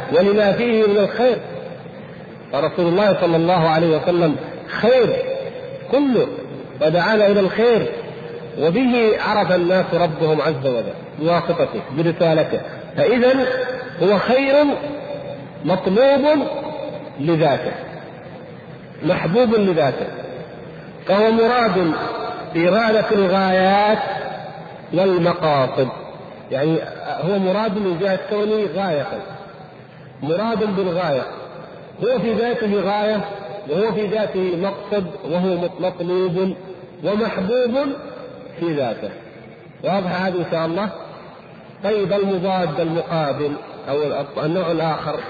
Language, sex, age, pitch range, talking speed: Arabic, male, 50-69, 170-220 Hz, 90 wpm